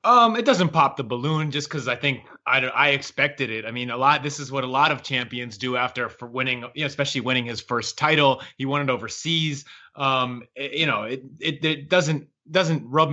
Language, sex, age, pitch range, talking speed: English, male, 30-49, 125-150 Hz, 230 wpm